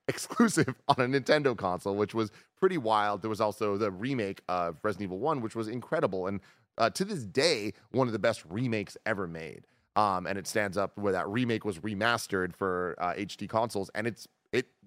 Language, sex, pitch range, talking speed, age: English, male, 95-125 Hz, 200 wpm, 30-49